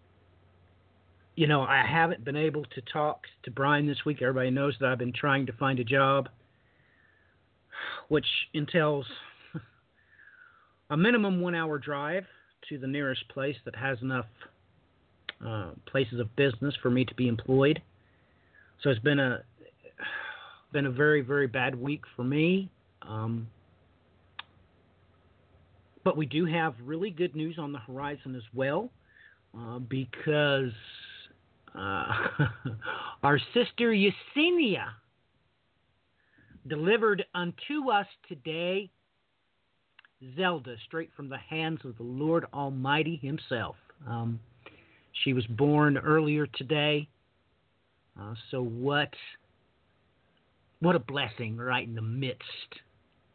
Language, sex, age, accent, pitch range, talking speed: English, male, 40-59, American, 120-155 Hz, 120 wpm